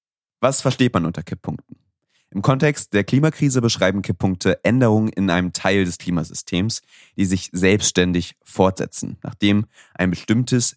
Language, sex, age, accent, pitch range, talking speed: German, male, 30-49, German, 90-125 Hz, 135 wpm